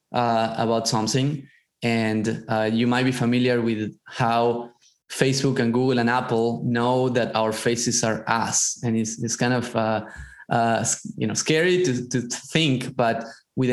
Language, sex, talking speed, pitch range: English, male, 160 wpm, 115-130 Hz